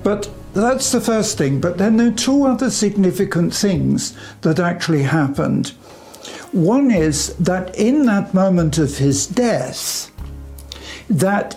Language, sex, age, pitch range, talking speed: English, male, 60-79, 150-210 Hz, 135 wpm